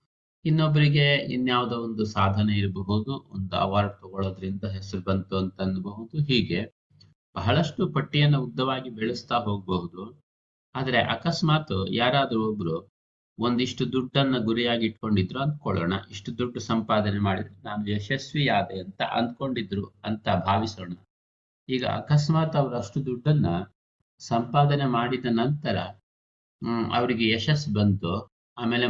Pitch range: 100-135 Hz